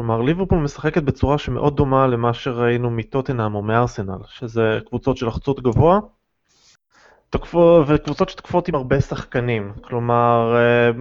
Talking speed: 120 wpm